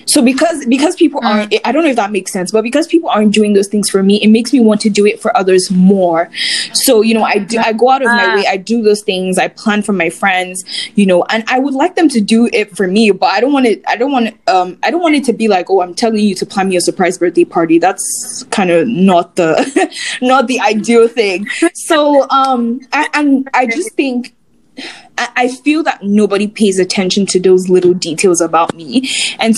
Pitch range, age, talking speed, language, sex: 185-250 Hz, 10-29, 240 wpm, English, female